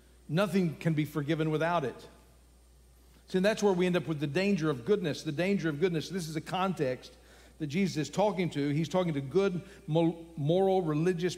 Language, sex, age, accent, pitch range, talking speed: English, male, 50-69, American, 125-190 Hz, 200 wpm